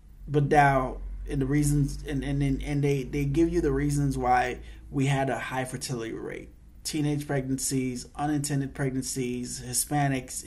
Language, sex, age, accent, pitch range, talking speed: English, male, 30-49, American, 125-140 Hz, 150 wpm